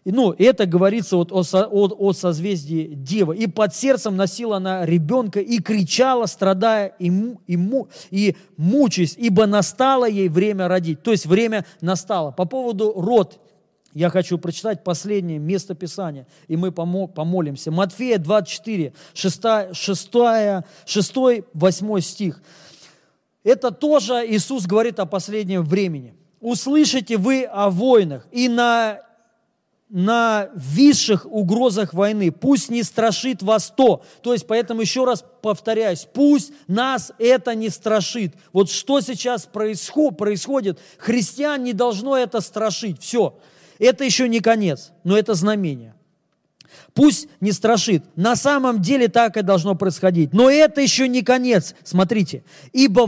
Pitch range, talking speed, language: 185-235 Hz, 125 wpm, Russian